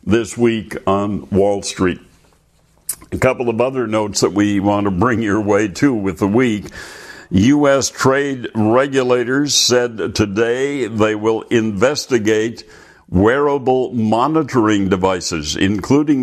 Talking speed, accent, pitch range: 120 wpm, American, 100-125 Hz